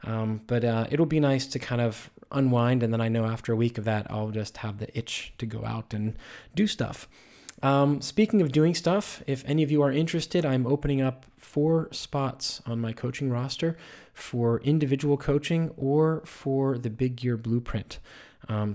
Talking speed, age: 190 wpm, 20-39